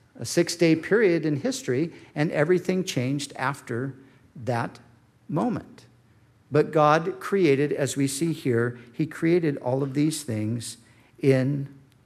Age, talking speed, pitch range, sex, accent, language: 50-69, 125 wpm, 130-155 Hz, male, American, English